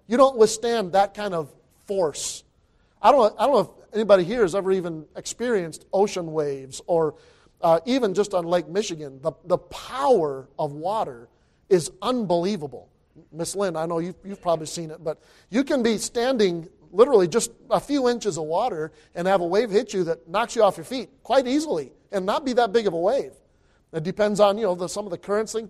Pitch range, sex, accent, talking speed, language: 155-210 Hz, male, American, 210 wpm, English